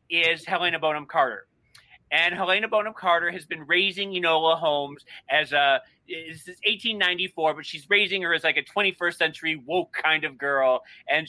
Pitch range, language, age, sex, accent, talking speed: 145-175 Hz, English, 30-49, male, American, 170 wpm